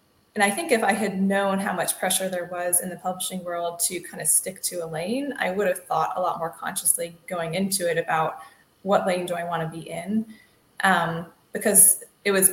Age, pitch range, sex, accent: 20-39, 175-225 Hz, female, American